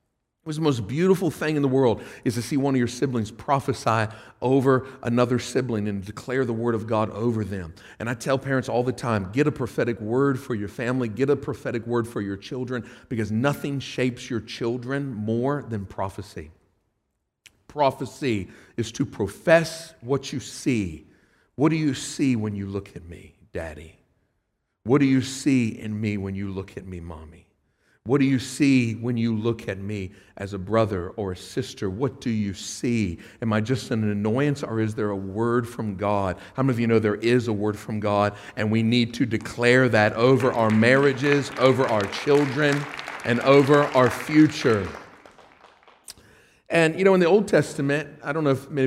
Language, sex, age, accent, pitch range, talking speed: English, male, 50-69, American, 105-135 Hz, 190 wpm